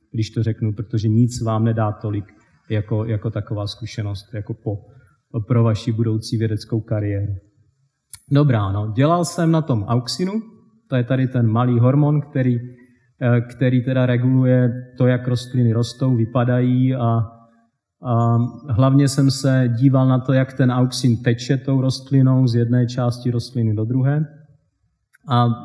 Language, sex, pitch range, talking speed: Czech, male, 115-135 Hz, 140 wpm